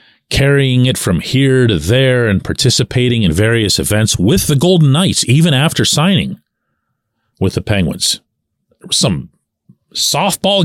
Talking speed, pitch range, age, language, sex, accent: 130 wpm, 105-150 Hz, 40-59, English, male, American